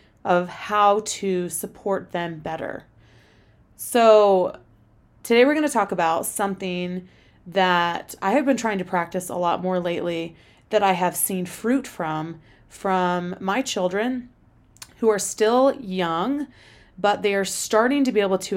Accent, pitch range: American, 175-215 Hz